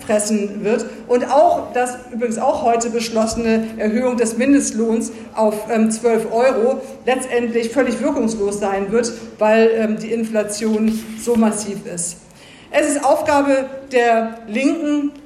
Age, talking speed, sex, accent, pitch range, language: 50-69, 120 wpm, female, German, 220-250 Hz, German